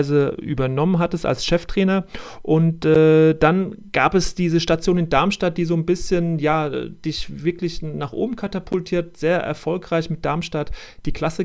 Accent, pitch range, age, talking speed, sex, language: German, 150-175 Hz, 40-59, 150 wpm, male, German